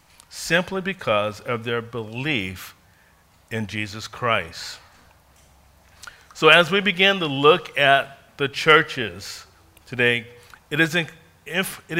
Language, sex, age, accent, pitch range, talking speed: English, male, 50-69, American, 105-150 Hz, 95 wpm